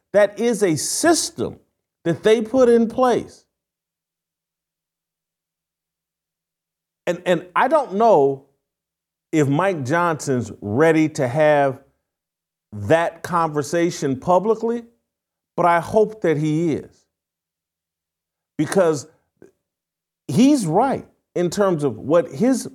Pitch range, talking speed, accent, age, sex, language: 140-220 Hz, 100 wpm, American, 50-69, male, English